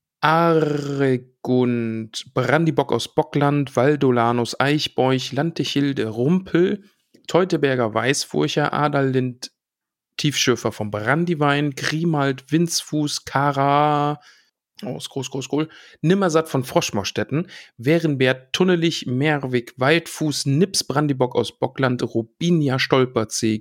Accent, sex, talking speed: German, male, 80 wpm